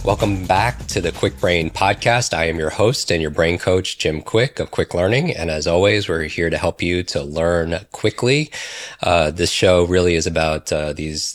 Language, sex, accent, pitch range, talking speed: English, male, American, 80-95 Hz, 205 wpm